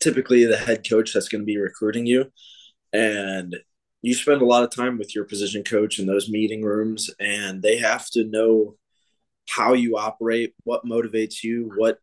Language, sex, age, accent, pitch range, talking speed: English, male, 20-39, American, 105-120 Hz, 185 wpm